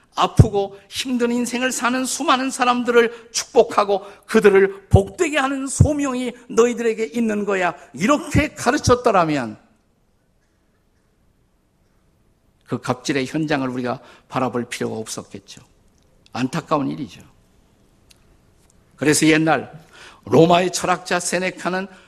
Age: 50-69